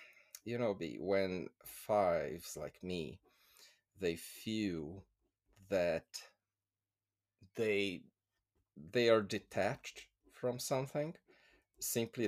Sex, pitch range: male, 90-115 Hz